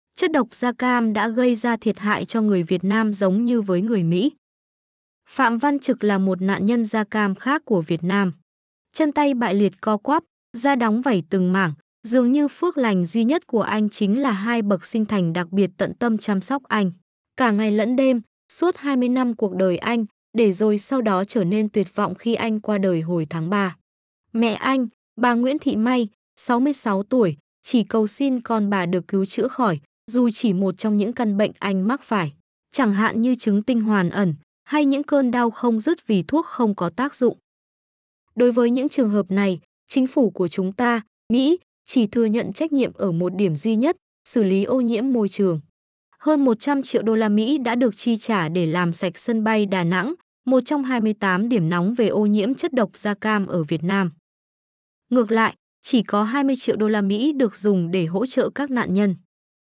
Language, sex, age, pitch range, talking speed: Vietnamese, female, 20-39, 195-250 Hz, 210 wpm